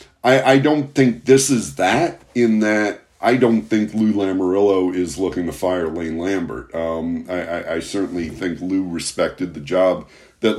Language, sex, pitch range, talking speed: English, male, 90-120 Hz, 170 wpm